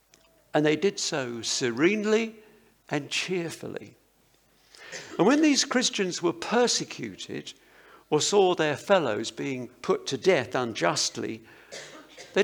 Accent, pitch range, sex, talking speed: British, 155-220 Hz, male, 110 wpm